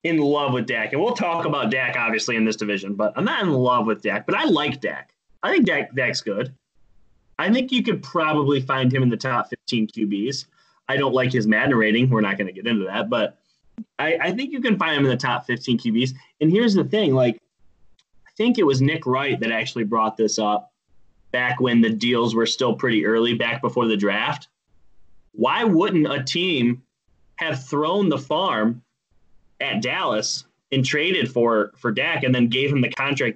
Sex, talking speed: male, 210 wpm